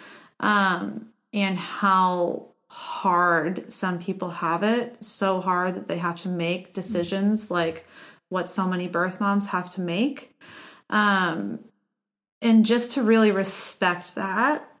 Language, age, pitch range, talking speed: English, 30-49, 185-225 Hz, 130 wpm